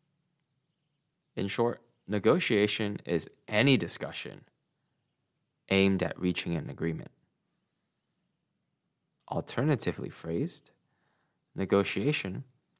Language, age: English, 20-39